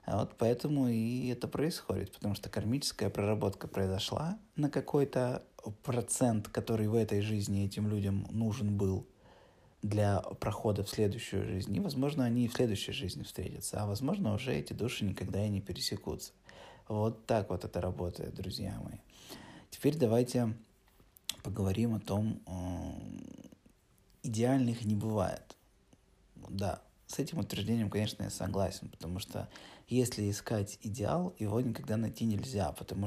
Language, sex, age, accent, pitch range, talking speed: Russian, male, 20-39, native, 100-120 Hz, 140 wpm